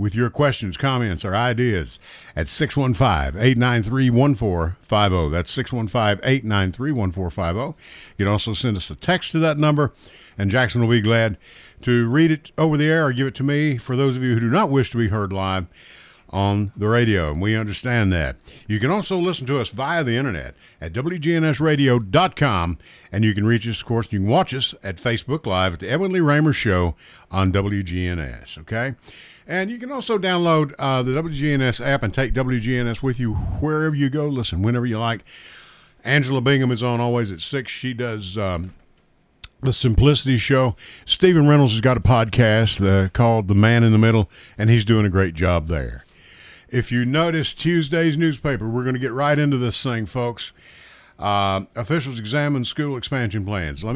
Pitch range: 100-140 Hz